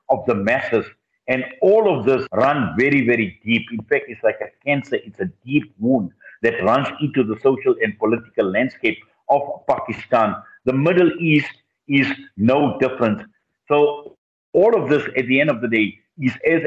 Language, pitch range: English, 120-150 Hz